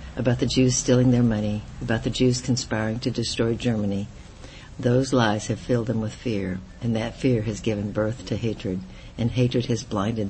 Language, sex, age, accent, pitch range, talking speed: English, female, 60-79, American, 110-125 Hz, 185 wpm